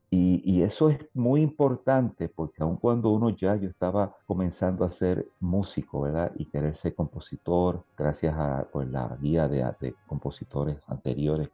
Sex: male